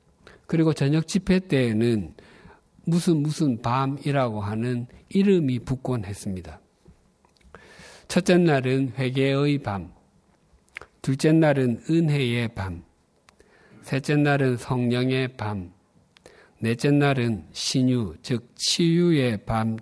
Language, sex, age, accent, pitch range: Korean, male, 50-69, native, 110-150 Hz